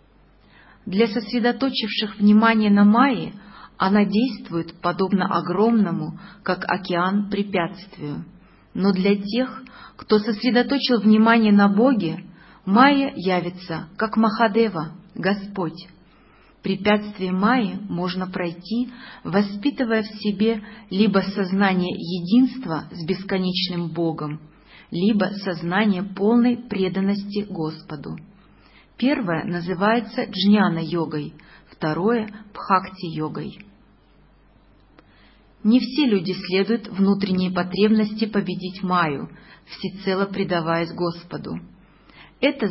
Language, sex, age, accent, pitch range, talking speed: Russian, female, 40-59, native, 180-225 Hz, 85 wpm